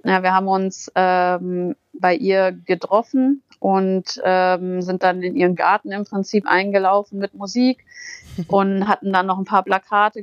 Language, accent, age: German, German, 30-49